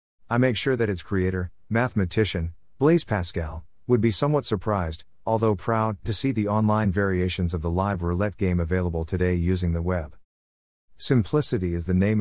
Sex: male